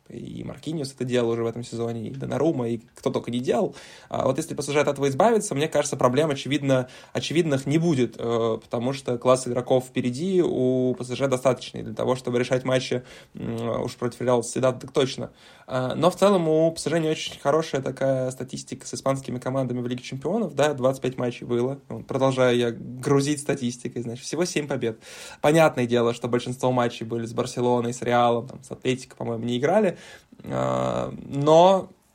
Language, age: Russian, 20-39